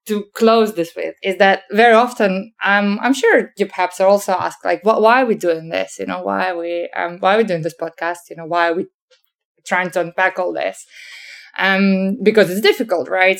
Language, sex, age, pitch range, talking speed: English, female, 20-39, 170-215 Hz, 225 wpm